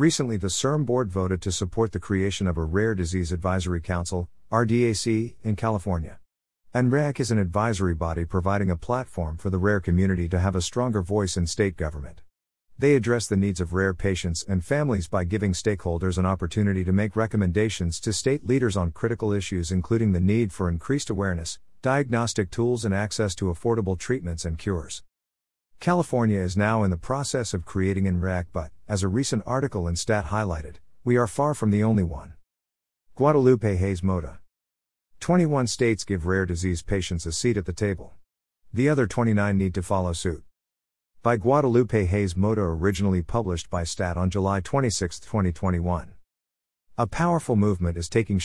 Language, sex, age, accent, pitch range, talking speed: English, male, 50-69, American, 90-115 Hz, 170 wpm